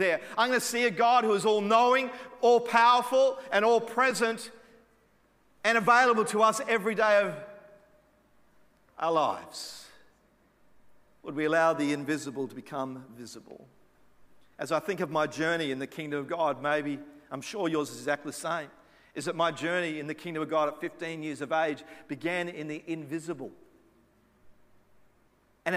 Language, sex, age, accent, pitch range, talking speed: English, male, 40-59, Australian, 160-205 Hz, 160 wpm